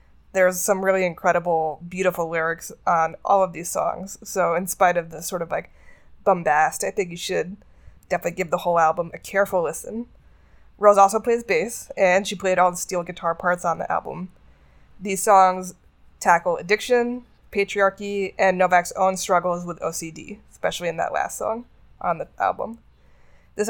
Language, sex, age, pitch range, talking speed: English, female, 20-39, 165-200 Hz, 170 wpm